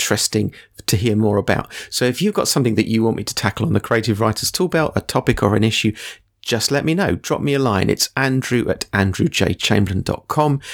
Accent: British